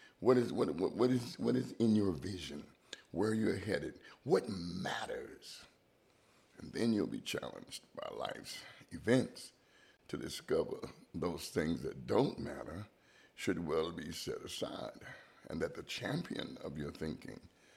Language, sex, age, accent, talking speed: English, male, 60-79, American, 150 wpm